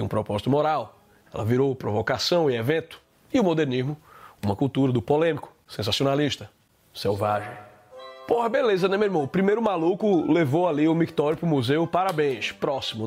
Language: Portuguese